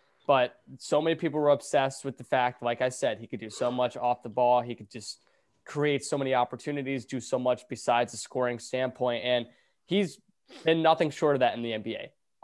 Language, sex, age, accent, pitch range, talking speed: English, male, 20-39, American, 115-135 Hz, 210 wpm